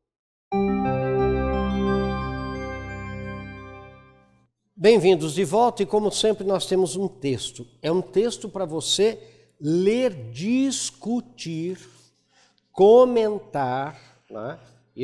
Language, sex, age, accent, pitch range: Portuguese, male, 60-79, Brazilian, 120-185 Hz